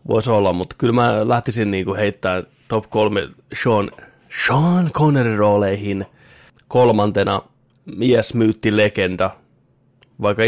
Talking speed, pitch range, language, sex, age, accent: 105 wpm, 100-120 Hz, Finnish, male, 20-39, native